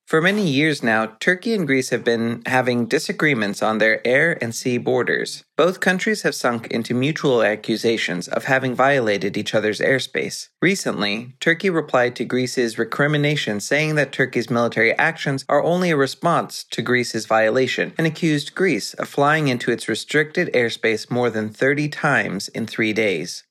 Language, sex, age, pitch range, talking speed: English, male, 30-49, 115-160 Hz, 165 wpm